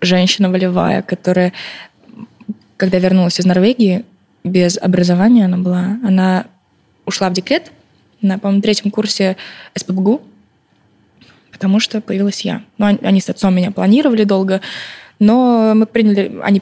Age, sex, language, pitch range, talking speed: 20-39, female, Russian, 190-225 Hz, 125 wpm